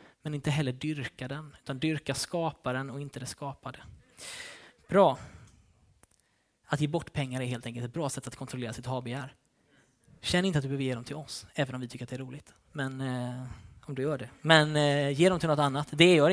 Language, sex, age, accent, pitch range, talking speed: Swedish, male, 20-39, native, 135-170 Hz, 215 wpm